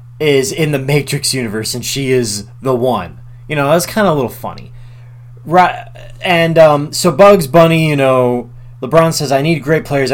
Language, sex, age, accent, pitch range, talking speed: English, male, 20-39, American, 120-145 Hz, 185 wpm